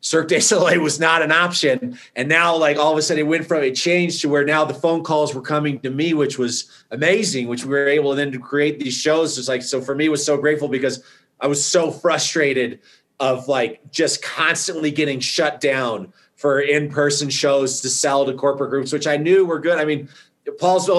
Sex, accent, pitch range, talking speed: male, American, 145-175 Hz, 220 wpm